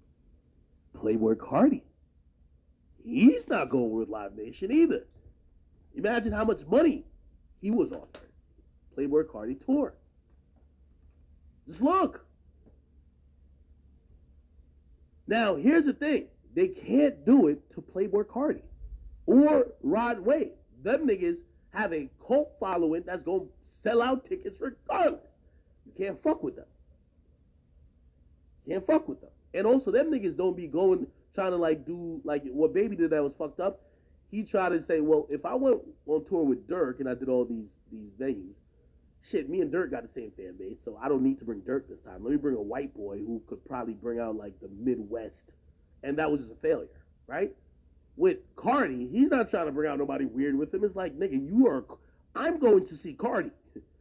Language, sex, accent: English, male, American